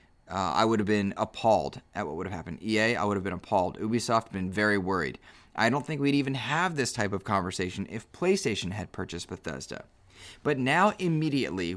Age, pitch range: 30-49, 100-130 Hz